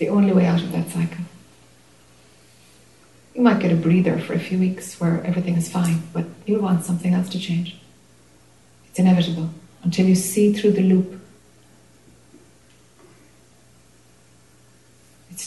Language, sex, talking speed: English, female, 140 wpm